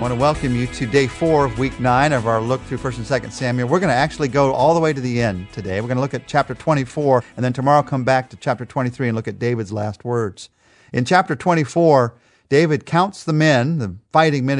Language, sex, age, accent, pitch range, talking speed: English, male, 50-69, American, 115-155 Hz, 245 wpm